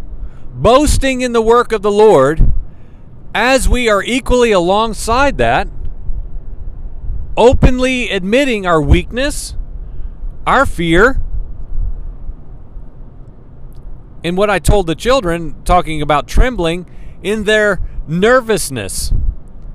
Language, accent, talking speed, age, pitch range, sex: English, American, 95 wpm, 40-59, 165-250 Hz, male